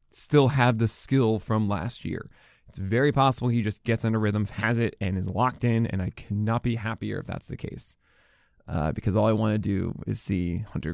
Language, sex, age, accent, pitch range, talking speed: English, male, 20-39, American, 110-145 Hz, 220 wpm